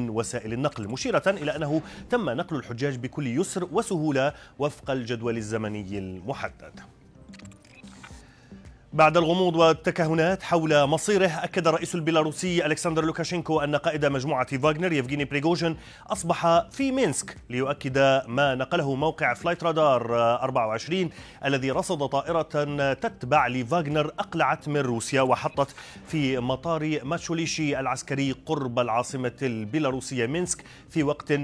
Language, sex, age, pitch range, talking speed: Arabic, male, 30-49, 125-160 Hz, 115 wpm